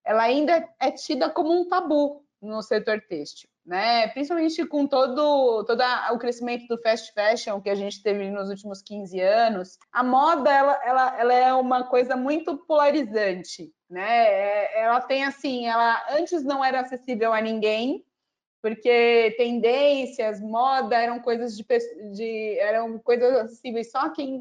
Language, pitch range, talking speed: Portuguese, 225-285 Hz, 150 wpm